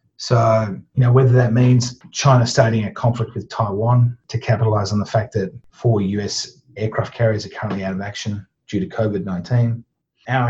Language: English